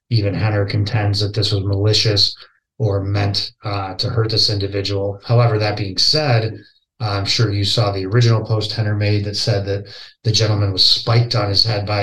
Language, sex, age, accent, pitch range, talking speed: English, male, 30-49, American, 100-115 Hz, 190 wpm